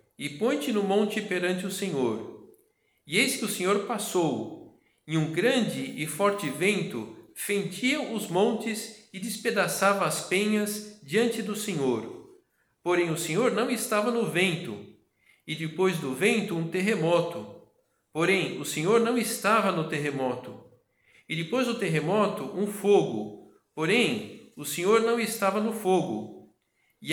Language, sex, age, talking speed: Portuguese, male, 50-69, 140 wpm